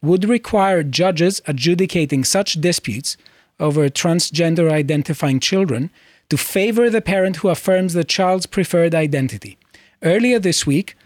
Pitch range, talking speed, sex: 145-190 Hz, 120 wpm, male